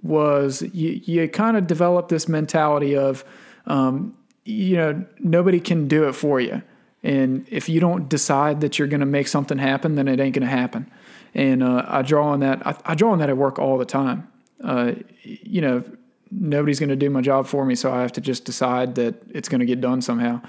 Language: English